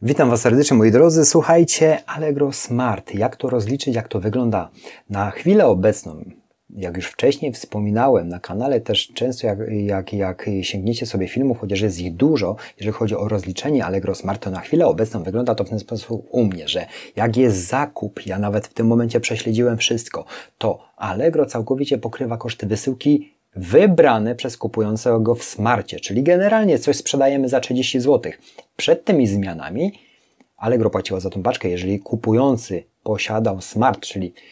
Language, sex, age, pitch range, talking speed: Polish, male, 30-49, 100-130 Hz, 165 wpm